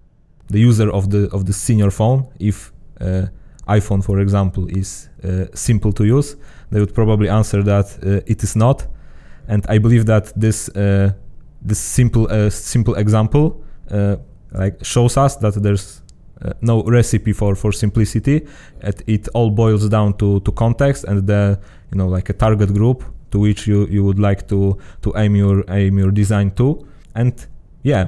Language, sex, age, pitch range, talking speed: Polish, male, 20-39, 95-110 Hz, 175 wpm